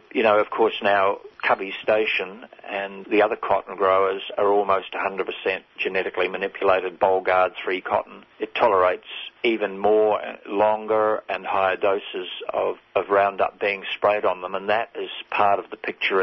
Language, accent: English, Australian